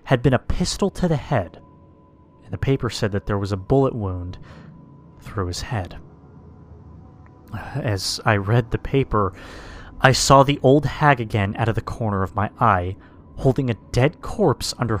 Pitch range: 100-130 Hz